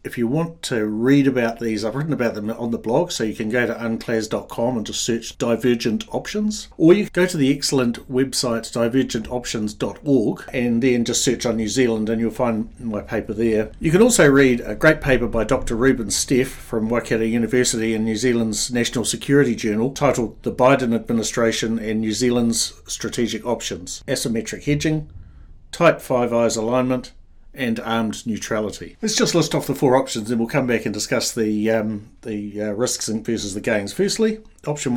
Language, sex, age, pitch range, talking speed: English, male, 50-69, 110-130 Hz, 185 wpm